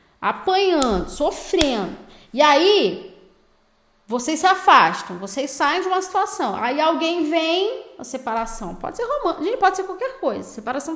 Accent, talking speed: Brazilian, 140 wpm